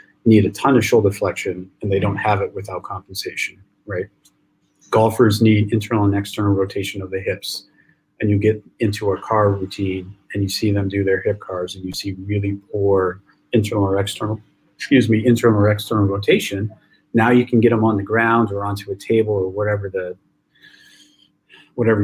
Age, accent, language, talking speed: 40-59, American, English, 185 wpm